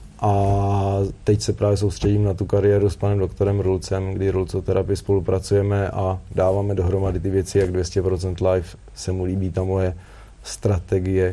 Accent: native